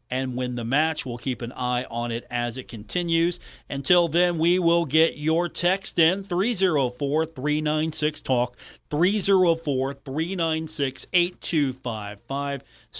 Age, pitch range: 40-59, 130-170 Hz